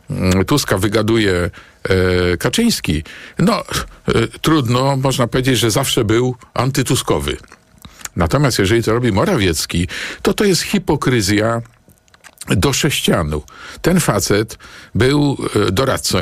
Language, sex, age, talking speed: Polish, male, 50-69, 95 wpm